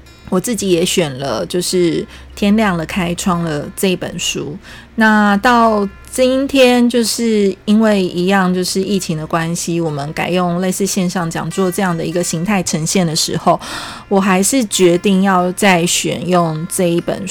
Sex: female